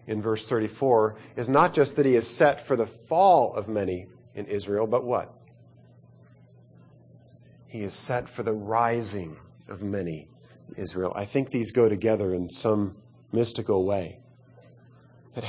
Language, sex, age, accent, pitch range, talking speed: English, male, 40-59, American, 100-130 Hz, 150 wpm